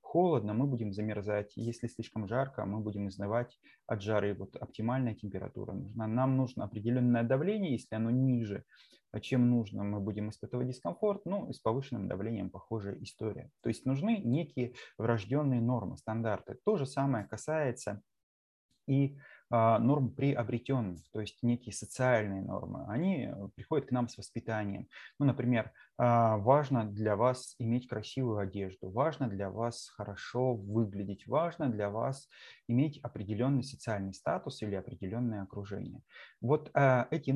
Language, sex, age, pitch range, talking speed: Russian, male, 20-39, 105-130 Hz, 140 wpm